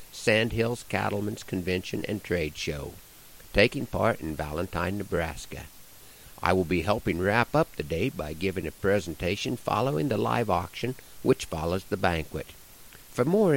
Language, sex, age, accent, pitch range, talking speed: English, male, 60-79, American, 90-125 Hz, 145 wpm